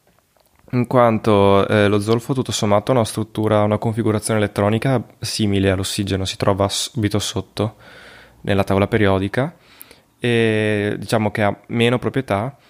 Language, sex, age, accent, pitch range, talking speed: Italian, male, 20-39, native, 100-115 Hz, 130 wpm